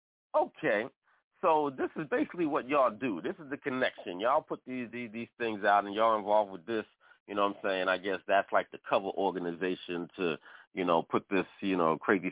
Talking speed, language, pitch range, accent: 215 wpm, English, 90-125 Hz, American